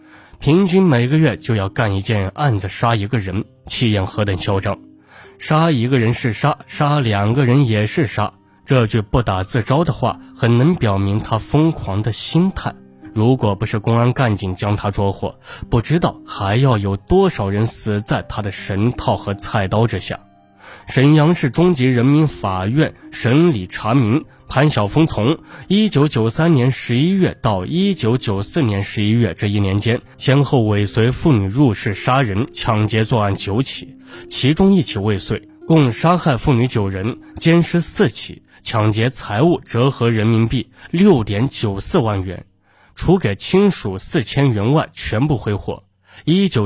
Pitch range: 105-145 Hz